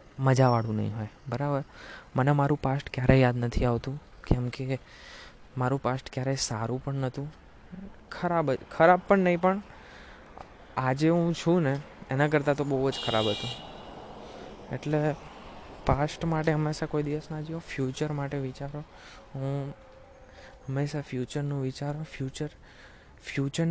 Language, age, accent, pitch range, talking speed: Gujarati, 20-39, native, 125-150 Hz, 100 wpm